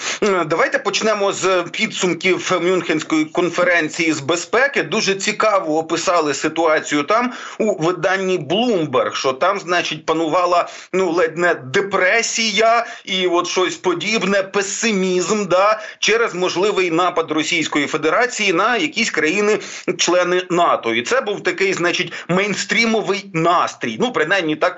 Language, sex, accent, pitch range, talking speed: Ukrainian, male, native, 165-200 Hz, 120 wpm